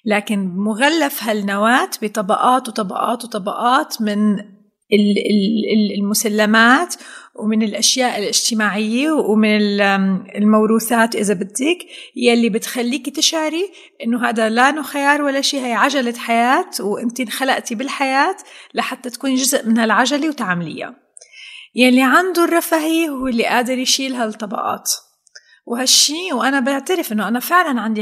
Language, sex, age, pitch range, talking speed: Arabic, female, 30-49, 210-265 Hz, 115 wpm